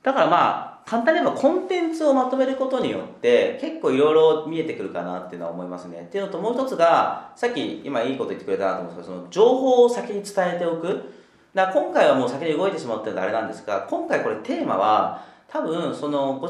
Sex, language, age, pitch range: male, Japanese, 40-59, 165-270 Hz